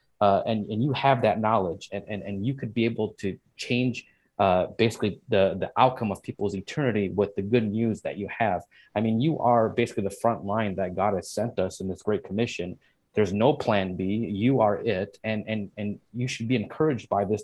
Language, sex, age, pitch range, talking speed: English, male, 30-49, 100-125 Hz, 220 wpm